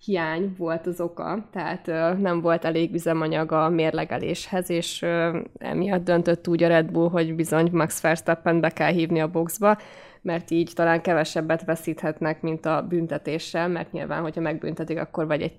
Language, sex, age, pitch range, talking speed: Hungarian, female, 20-39, 165-190 Hz, 175 wpm